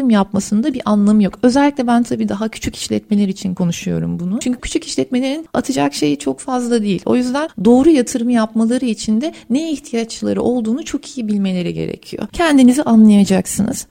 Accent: native